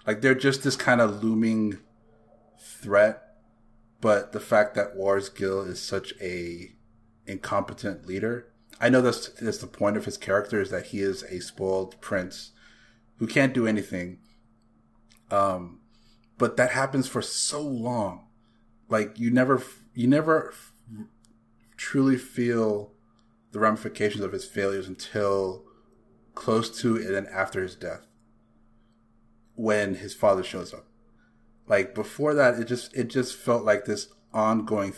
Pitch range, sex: 100-115 Hz, male